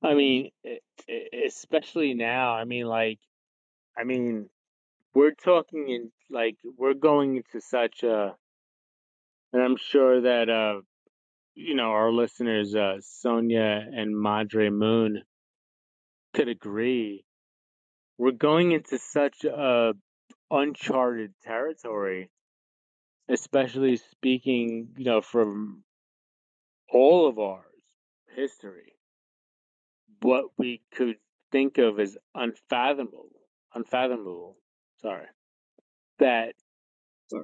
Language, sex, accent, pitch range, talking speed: English, male, American, 110-135 Hz, 95 wpm